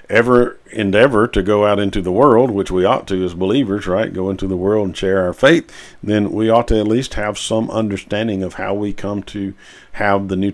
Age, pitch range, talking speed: 50-69, 95-110 Hz, 230 wpm